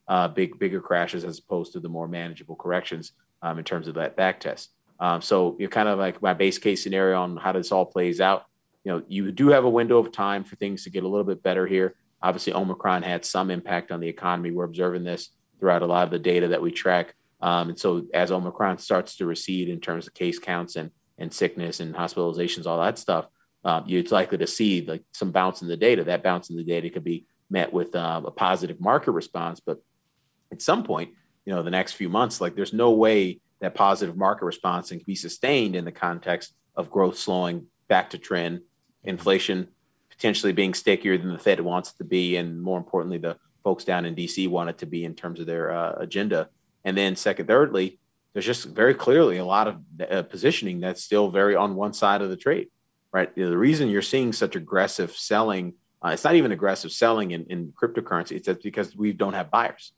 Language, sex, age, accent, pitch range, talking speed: English, male, 30-49, American, 85-95 Hz, 225 wpm